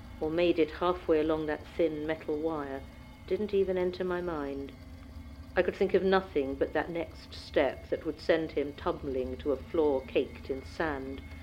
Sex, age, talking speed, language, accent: female, 50-69, 180 wpm, English, British